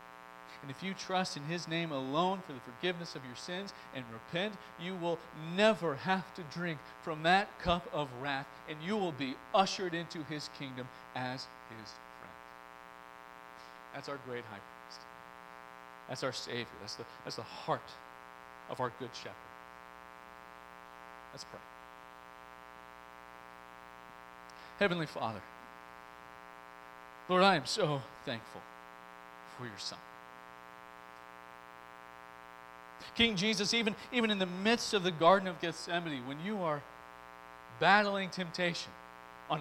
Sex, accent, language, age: male, American, English, 40-59